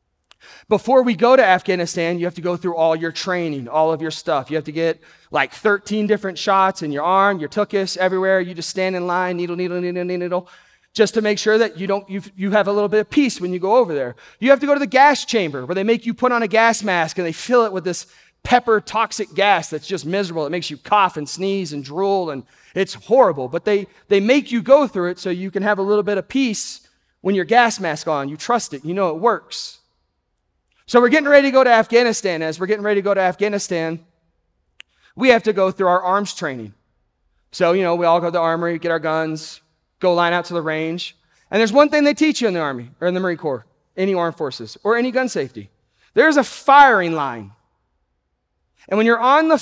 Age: 30-49